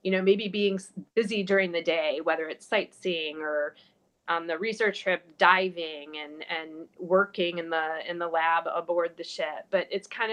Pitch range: 170-200 Hz